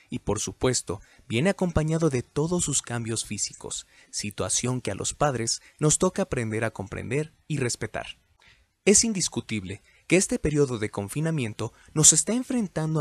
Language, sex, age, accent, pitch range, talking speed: Spanish, male, 30-49, Mexican, 110-145 Hz, 150 wpm